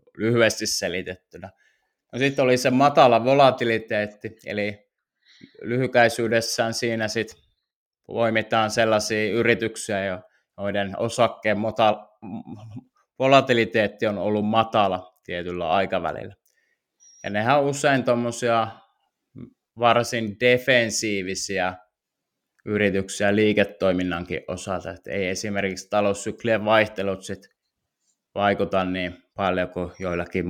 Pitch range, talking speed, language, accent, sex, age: 95-115 Hz, 90 wpm, Finnish, native, male, 20-39